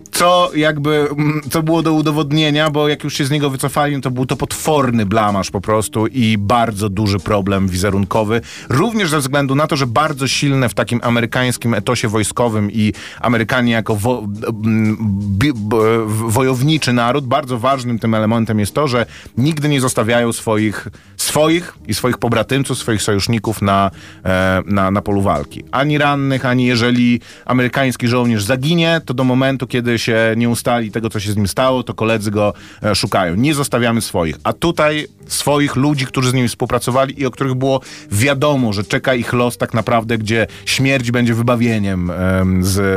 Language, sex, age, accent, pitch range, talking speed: Polish, male, 30-49, native, 100-130 Hz, 160 wpm